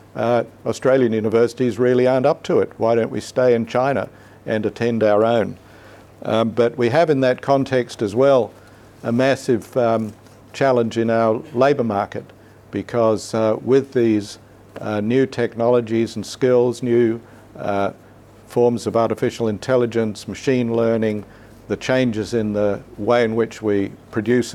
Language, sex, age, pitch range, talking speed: English, male, 60-79, 105-120 Hz, 150 wpm